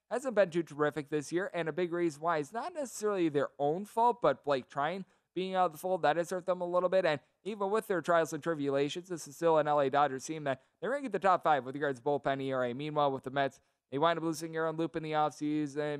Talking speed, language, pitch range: 275 wpm, English, 140-175 Hz